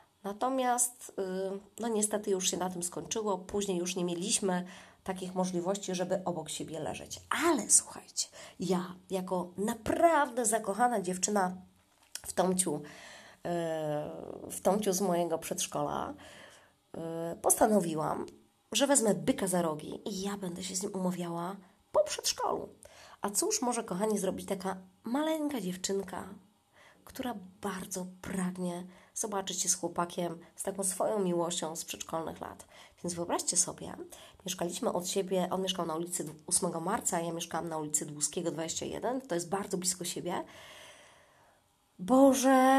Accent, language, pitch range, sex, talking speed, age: native, Polish, 175-230 Hz, female, 130 wpm, 20-39